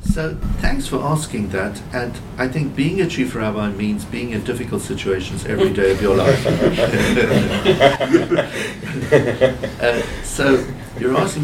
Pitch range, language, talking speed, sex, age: 105-130 Hz, English, 135 wpm, male, 60-79